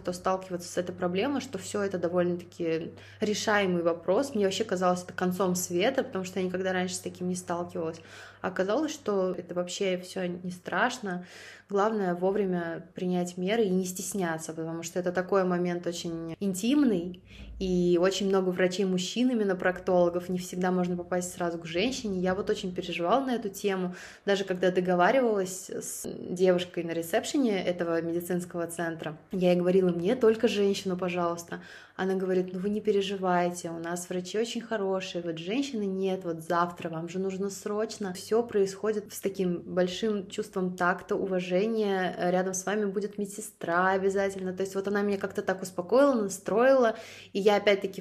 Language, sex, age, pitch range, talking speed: Russian, female, 20-39, 180-200 Hz, 160 wpm